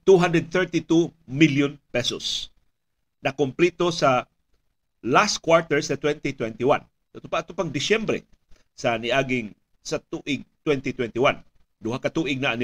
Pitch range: 135-170 Hz